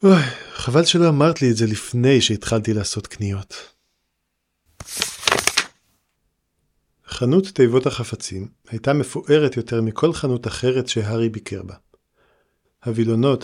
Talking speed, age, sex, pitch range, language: 105 wpm, 40-59, male, 110-135 Hz, Hebrew